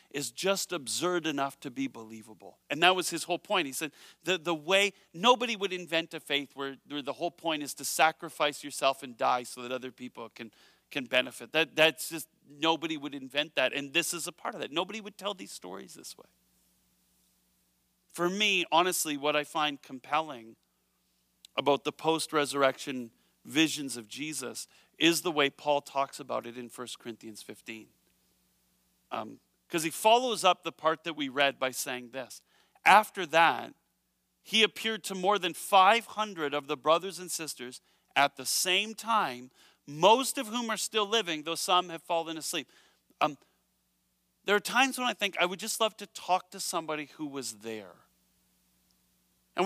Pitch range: 125-185 Hz